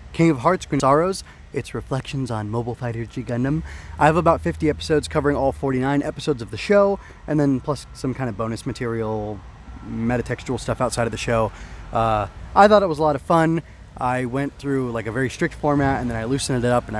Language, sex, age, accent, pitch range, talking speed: English, male, 20-39, American, 115-145 Hz, 220 wpm